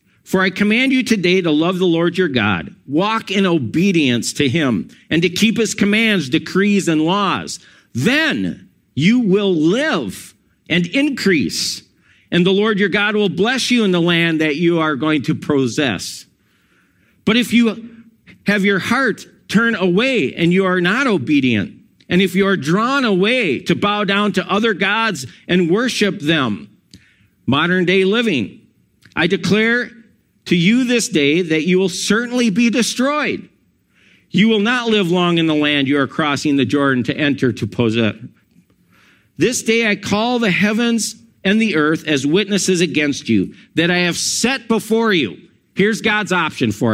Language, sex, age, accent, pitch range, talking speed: English, male, 50-69, American, 160-220 Hz, 165 wpm